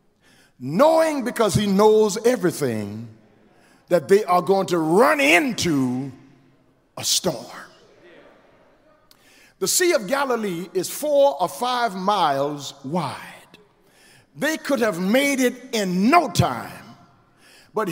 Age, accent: 50-69, American